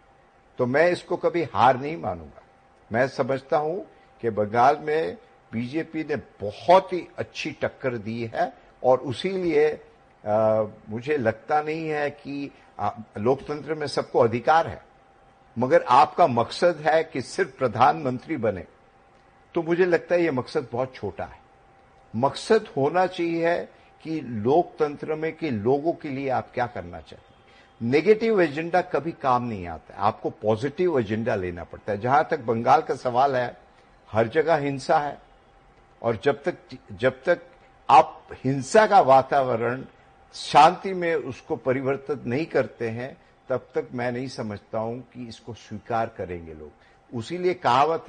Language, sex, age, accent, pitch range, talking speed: Hindi, male, 50-69, native, 115-160 Hz, 145 wpm